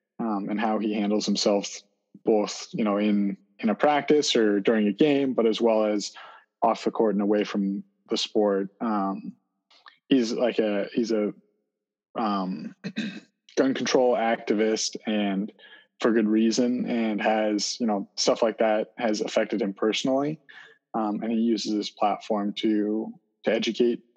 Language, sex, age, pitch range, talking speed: English, male, 20-39, 105-120 Hz, 155 wpm